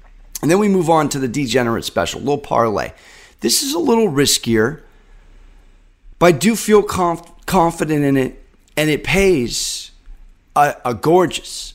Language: English